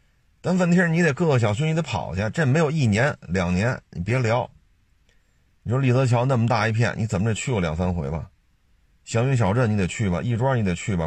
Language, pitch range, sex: Chinese, 95-125 Hz, male